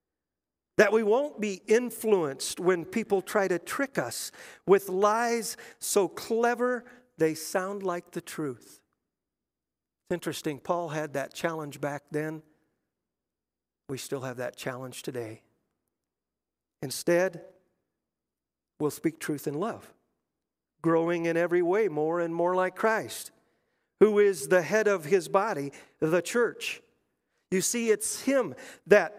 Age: 50-69